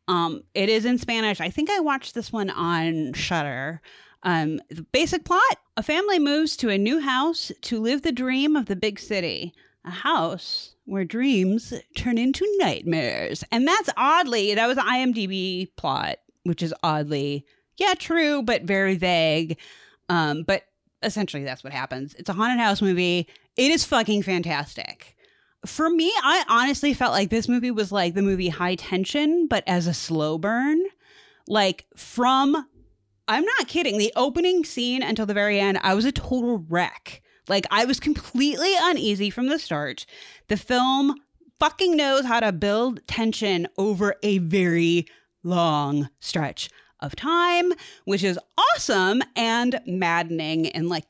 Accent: American